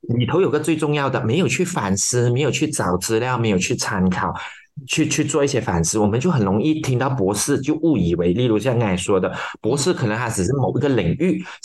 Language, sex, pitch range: Chinese, male, 110-160 Hz